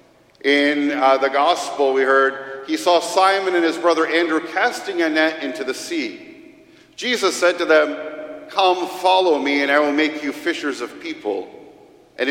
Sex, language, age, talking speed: male, English, 50-69, 170 wpm